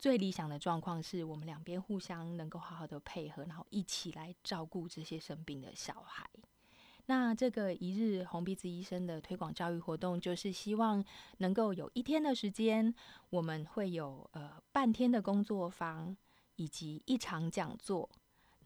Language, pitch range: Chinese, 160-200 Hz